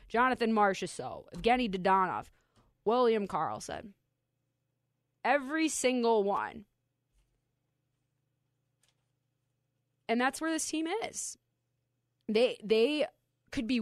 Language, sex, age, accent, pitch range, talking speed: English, female, 20-39, American, 140-220 Hz, 80 wpm